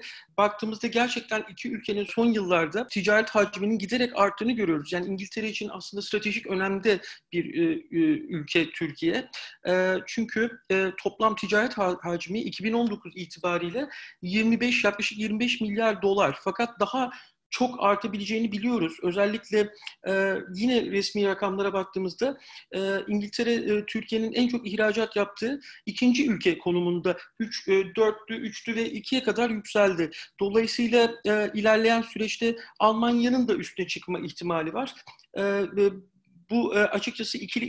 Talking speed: 120 wpm